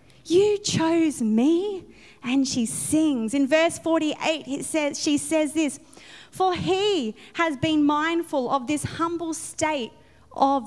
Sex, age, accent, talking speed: female, 20-39, Australian, 135 wpm